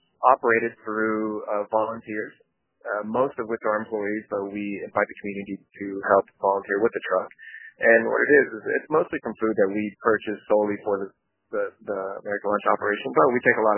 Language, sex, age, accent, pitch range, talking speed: English, male, 30-49, American, 100-110 Hz, 205 wpm